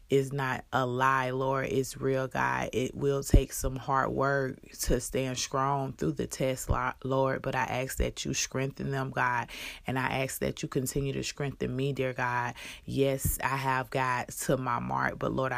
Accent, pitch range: American, 130-140 Hz